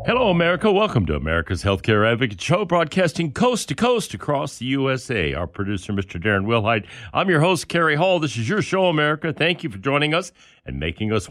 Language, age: English, 60-79